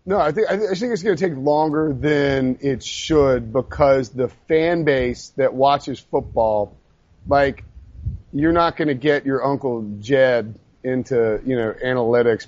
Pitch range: 125-155 Hz